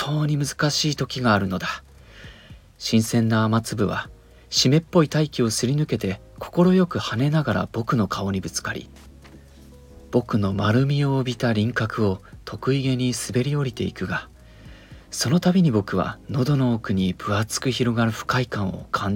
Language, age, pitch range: Japanese, 40-59, 95-125 Hz